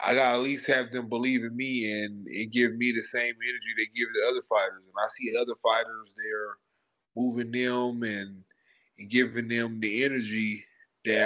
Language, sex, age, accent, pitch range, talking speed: English, male, 20-39, American, 110-145 Hz, 195 wpm